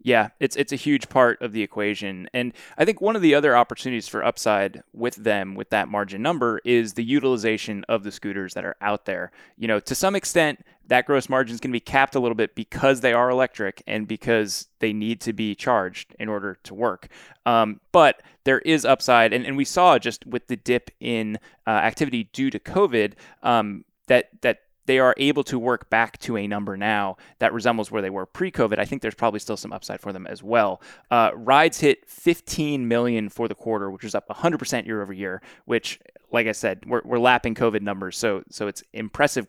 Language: English